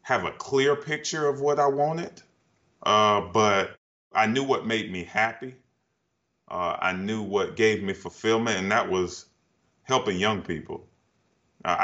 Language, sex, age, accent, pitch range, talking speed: English, male, 30-49, American, 90-115 Hz, 150 wpm